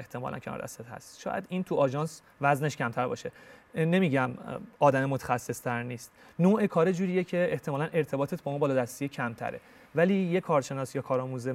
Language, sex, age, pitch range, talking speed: Persian, male, 30-49, 130-165 Hz, 160 wpm